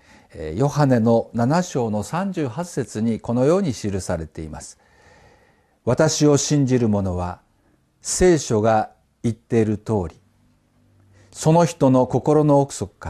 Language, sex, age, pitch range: Japanese, male, 50-69, 110-165 Hz